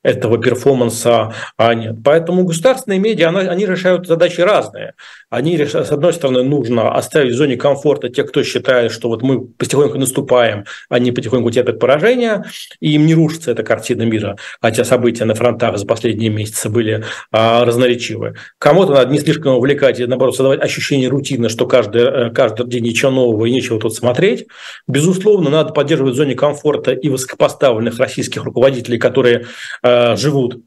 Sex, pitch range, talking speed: male, 115-140 Hz, 165 wpm